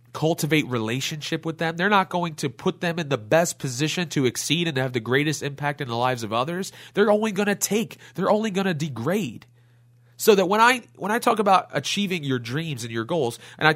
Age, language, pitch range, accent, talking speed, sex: 30-49, English, 120-175 Hz, American, 230 wpm, male